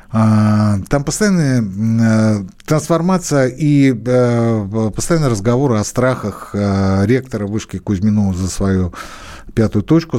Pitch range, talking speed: 110-155 Hz, 90 wpm